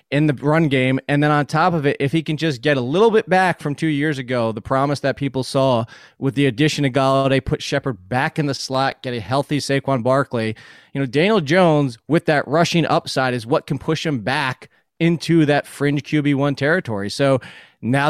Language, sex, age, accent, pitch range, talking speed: English, male, 20-39, American, 135-165 Hz, 215 wpm